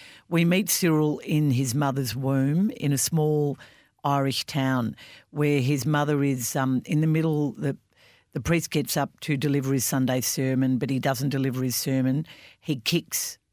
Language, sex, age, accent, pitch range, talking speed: English, female, 50-69, Australian, 135-160 Hz, 170 wpm